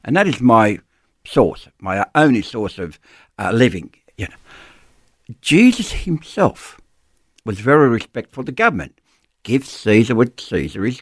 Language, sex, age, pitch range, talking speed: English, male, 60-79, 120-155 Hz, 140 wpm